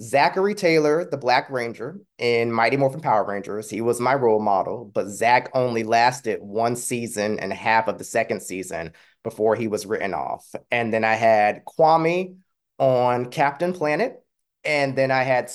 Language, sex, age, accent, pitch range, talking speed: English, male, 20-39, American, 110-135 Hz, 170 wpm